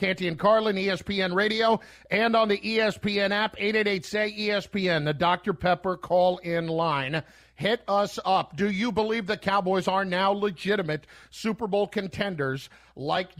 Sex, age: male, 50-69